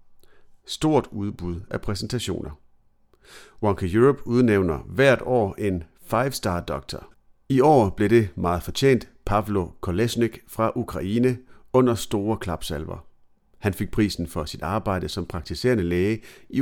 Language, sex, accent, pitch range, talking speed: Danish, male, native, 90-120 Hz, 130 wpm